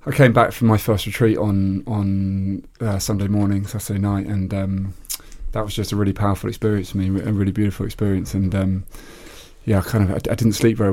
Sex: male